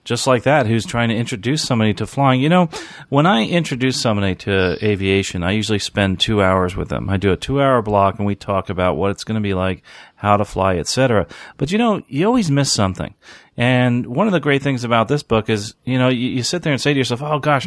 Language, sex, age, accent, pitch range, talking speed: English, male, 40-59, American, 110-140 Hz, 250 wpm